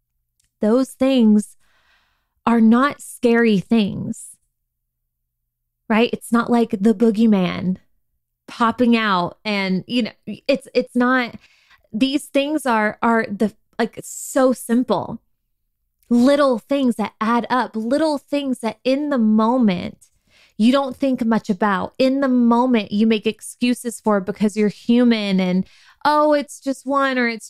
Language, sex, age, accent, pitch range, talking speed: English, female, 20-39, American, 190-245 Hz, 135 wpm